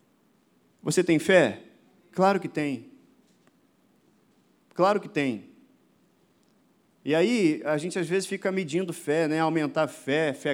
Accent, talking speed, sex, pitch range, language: Brazilian, 125 wpm, male, 150-190 Hz, Portuguese